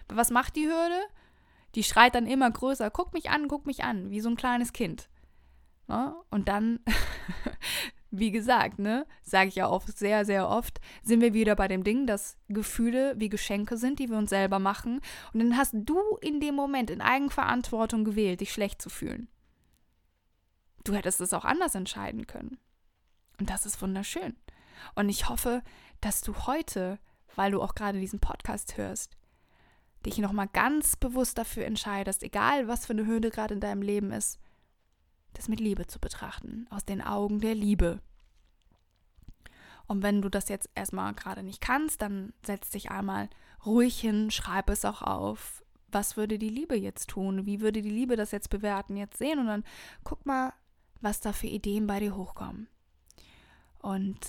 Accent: German